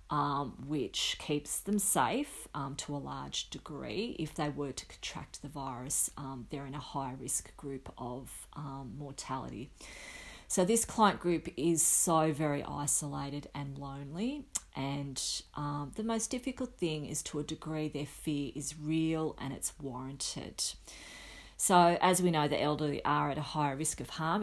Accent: Australian